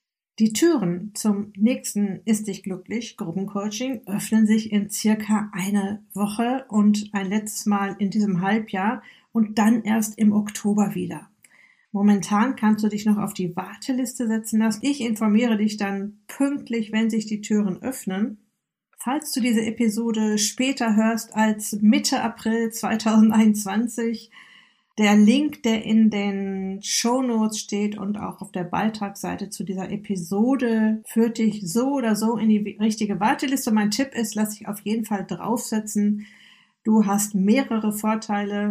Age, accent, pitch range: 50-69, German, 200-225 Hz